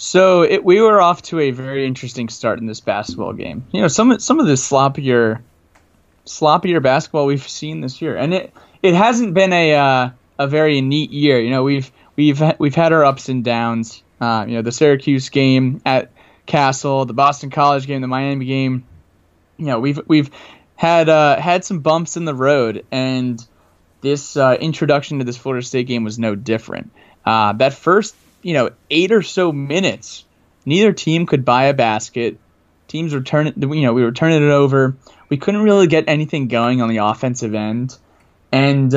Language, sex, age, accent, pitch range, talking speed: English, male, 20-39, American, 120-160 Hz, 190 wpm